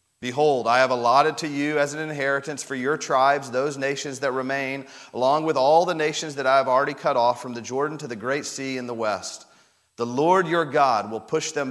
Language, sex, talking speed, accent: English, male, 225 wpm, American